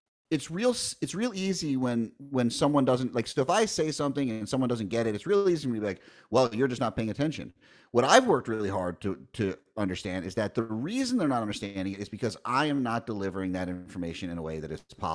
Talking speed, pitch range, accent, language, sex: 245 wpm, 105-155 Hz, American, English, male